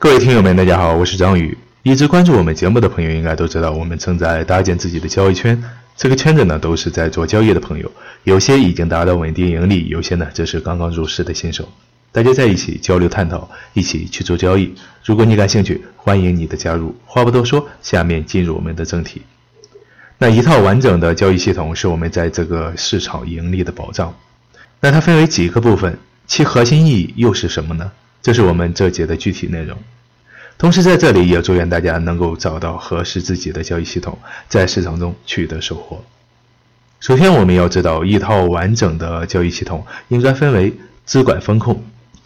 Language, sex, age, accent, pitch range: Chinese, male, 30-49, native, 85-120 Hz